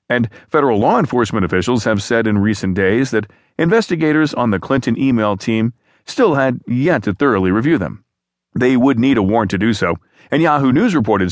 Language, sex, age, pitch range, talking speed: English, male, 40-59, 100-135 Hz, 190 wpm